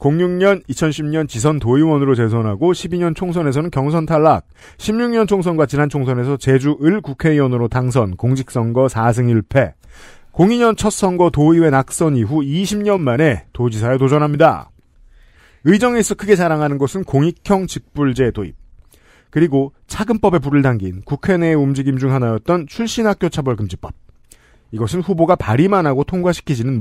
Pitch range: 135-185 Hz